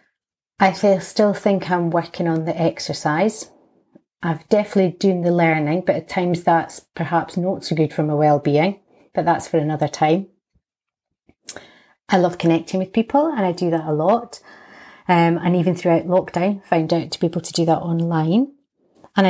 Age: 30-49